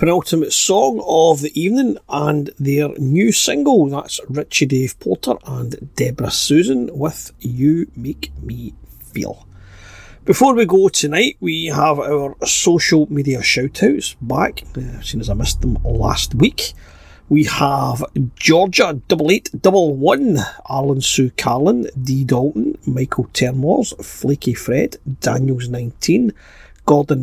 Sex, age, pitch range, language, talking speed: male, 40-59, 125-160 Hz, English, 120 wpm